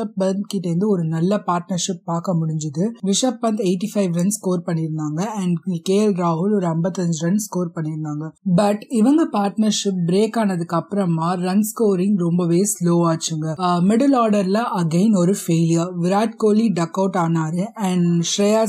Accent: native